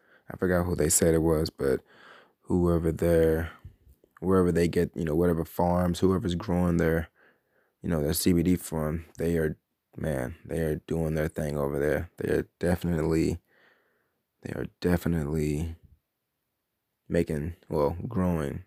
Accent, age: American, 20-39